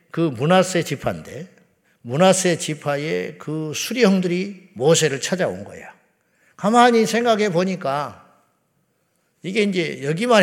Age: 50-69